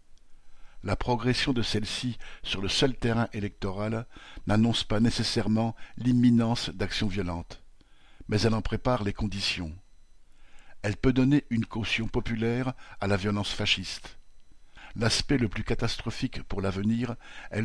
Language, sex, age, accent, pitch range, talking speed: French, male, 60-79, French, 100-115 Hz, 130 wpm